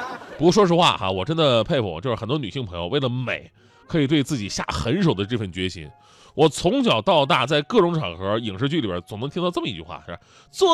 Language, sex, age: Chinese, male, 30-49